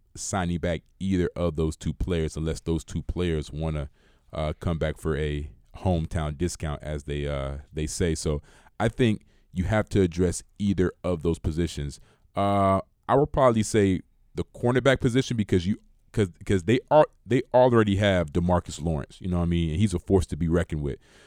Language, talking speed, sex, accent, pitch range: English, 190 wpm, male, American, 85-105 Hz